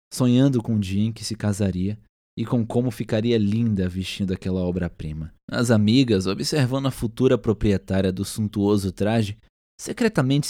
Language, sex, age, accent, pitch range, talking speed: Portuguese, male, 20-39, Brazilian, 95-130 Hz, 150 wpm